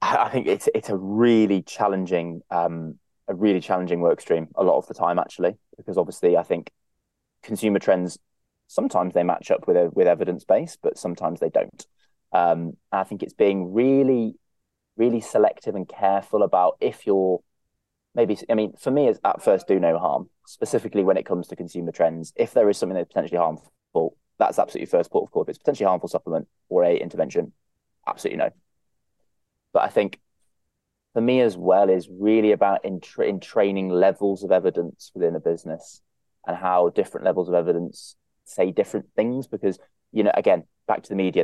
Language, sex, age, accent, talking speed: English, male, 20-39, British, 185 wpm